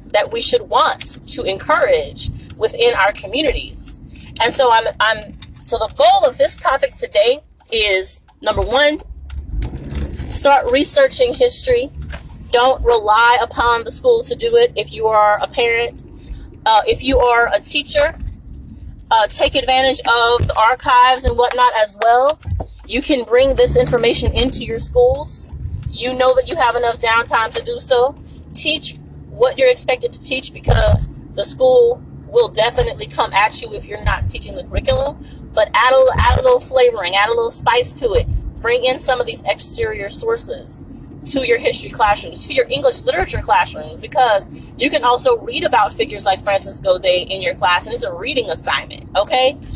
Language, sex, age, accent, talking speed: English, female, 30-49, American, 170 wpm